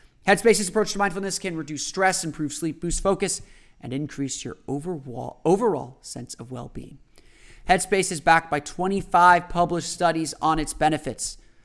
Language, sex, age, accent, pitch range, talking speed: English, male, 30-49, American, 140-185 Hz, 150 wpm